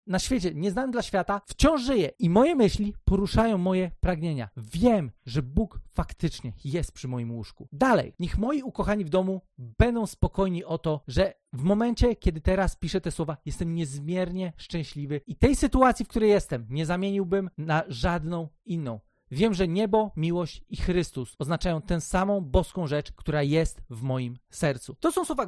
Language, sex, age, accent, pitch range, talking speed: Polish, male, 40-59, native, 160-230 Hz, 170 wpm